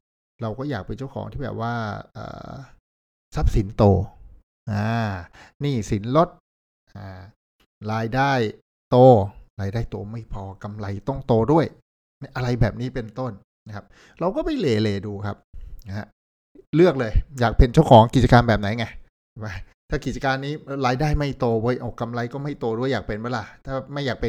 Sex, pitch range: male, 100-130 Hz